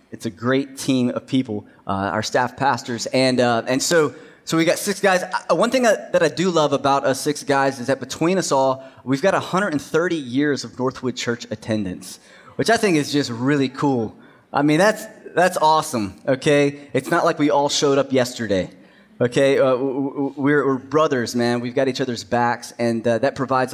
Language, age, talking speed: English, 20-39, 200 wpm